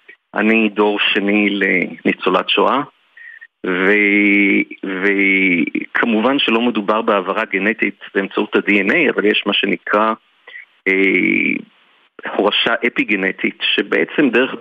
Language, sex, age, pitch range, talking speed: Hebrew, male, 50-69, 105-145 Hz, 90 wpm